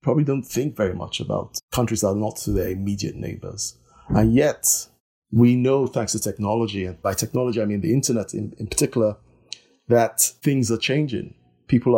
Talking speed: 180 wpm